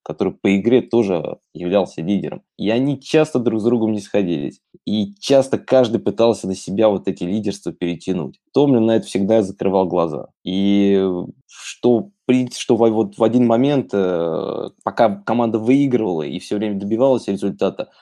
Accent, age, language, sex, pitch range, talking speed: native, 20-39, Russian, male, 95-120 Hz, 150 wpm